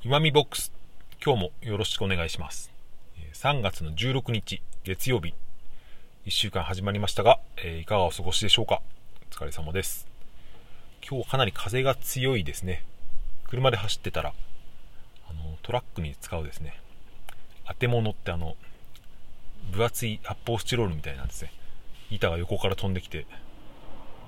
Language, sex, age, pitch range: Japanese, male, 30-49, 85-115 Hz